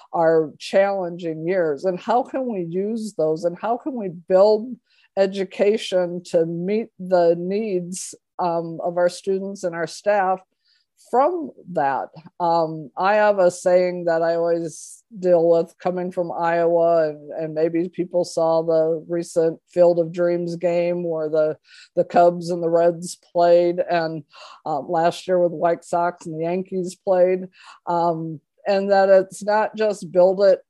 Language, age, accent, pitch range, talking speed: English, 50-69, American, 170-190 Hz, 150 wpm